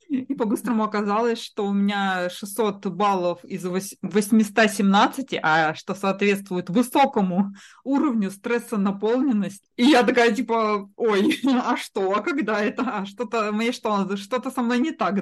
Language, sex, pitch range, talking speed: Russian, female, 180-230 Hz, 135 wpm